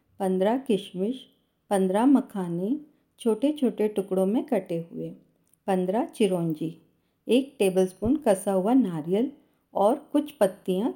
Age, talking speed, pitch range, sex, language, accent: 50-69, 110 wpm, 185-240 Hz, female, Hindi, native